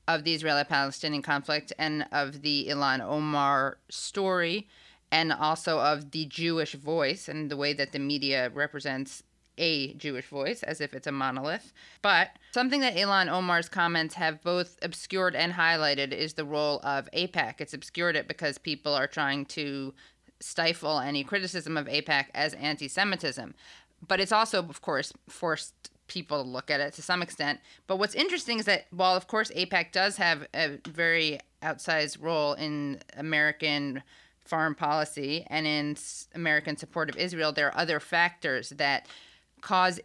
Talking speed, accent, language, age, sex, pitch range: 165 wpm, American, English, 20-39, female, 145-170 Hz